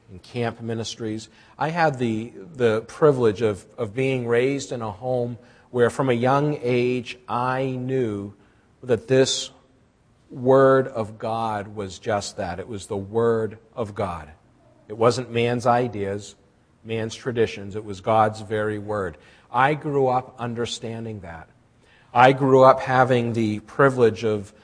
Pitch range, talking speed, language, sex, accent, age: 105-125 Hz, 145 wpm, English, male, American, 50-69